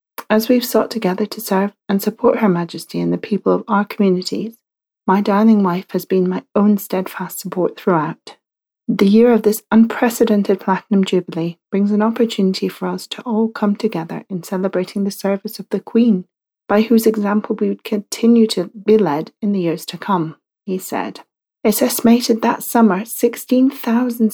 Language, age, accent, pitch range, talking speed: English, 30-49, British, 185-225 Hz, 175 wpm